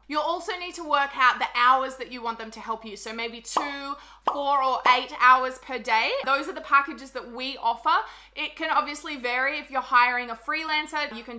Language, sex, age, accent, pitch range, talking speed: English, female, 20-39, Australian, 235-295 Hz, 220 wpm